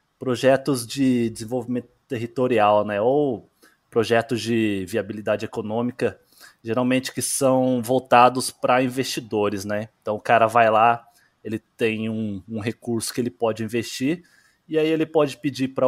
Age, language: 20-39, Portuguese